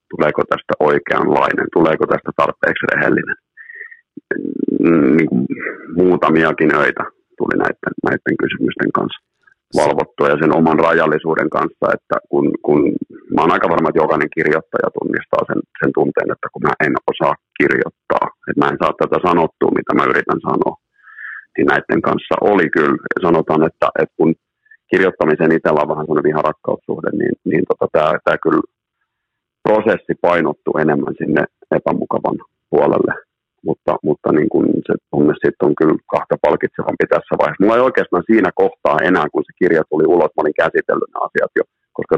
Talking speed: 150 wpm